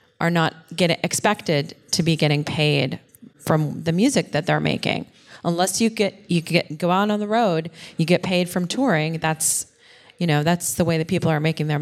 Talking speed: 205 wpm